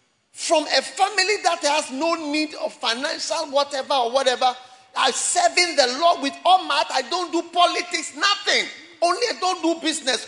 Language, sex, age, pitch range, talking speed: English, male, 40-59, 230-335 Hz, 170 wpm